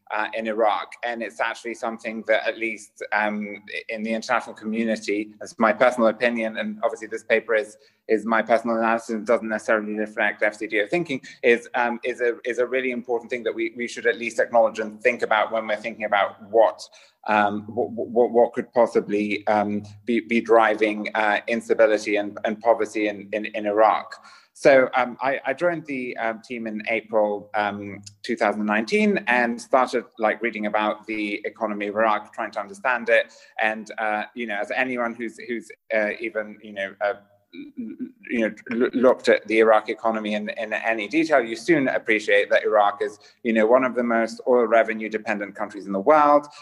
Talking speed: 190 wpm